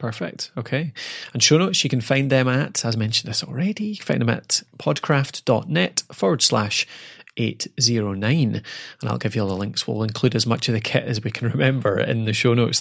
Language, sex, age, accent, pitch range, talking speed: English, male, 30-49, British, 110-135 Hz, 200 wpm